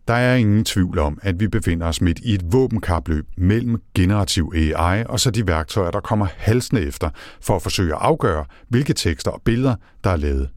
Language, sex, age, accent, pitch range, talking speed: Danish, male, 60-79, native, 80-110 Hz, 205 wpm